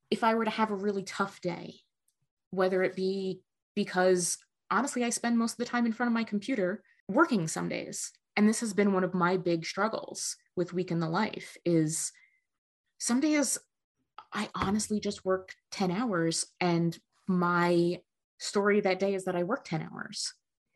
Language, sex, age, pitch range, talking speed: English, female, 20-39, 175-215 Hz, 180 wpm